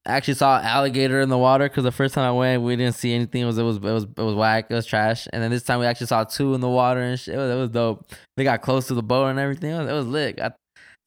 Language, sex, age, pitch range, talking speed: English, male, 10-29, 125-155 Hz, 335 wpm